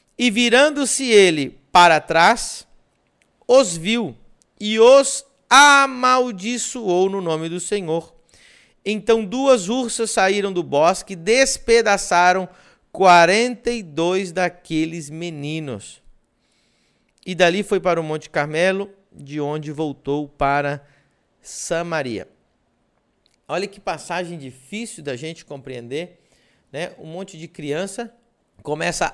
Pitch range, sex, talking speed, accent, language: 150-205 Hz, male, 105 wpm, Brazilian, Portuguese